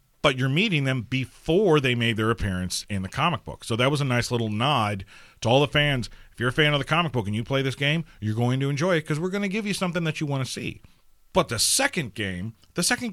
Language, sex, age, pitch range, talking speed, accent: English, male, 40-59, 110-150 Hz, 275 wpm, American